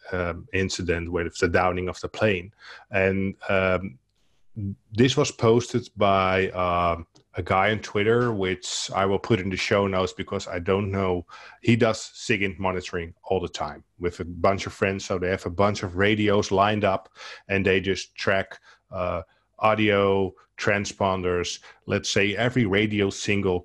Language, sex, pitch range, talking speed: English, male, 90-105 Hz, 160 wpm